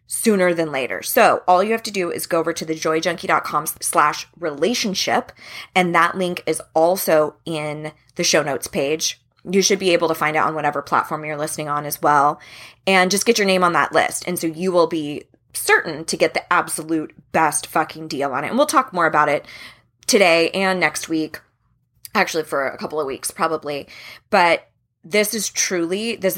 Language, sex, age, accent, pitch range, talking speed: English, female, 20-39, American, 155-195 Hz, 195 wpm